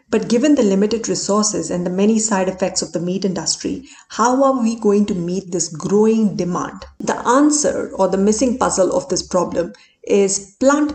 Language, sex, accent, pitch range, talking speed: Hindi, female, native, 185-235 Hz, 185 wpm